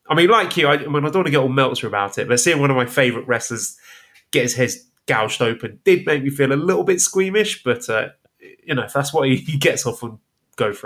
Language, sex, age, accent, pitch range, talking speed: English, male, 20-39, British, 120-145 Hz, 275 wpm